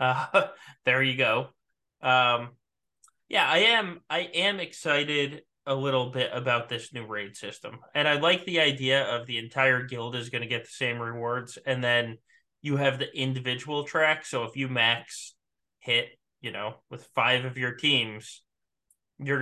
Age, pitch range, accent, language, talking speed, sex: 20-39, 120-155 Hz, American, English, 170 wpm, male